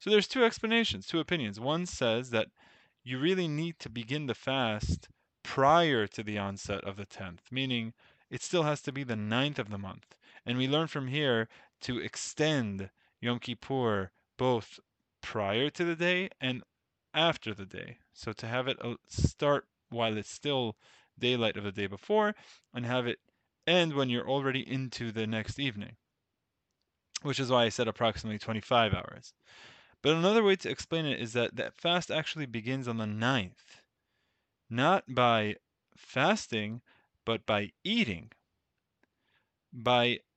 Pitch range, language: 110-145 Hz, English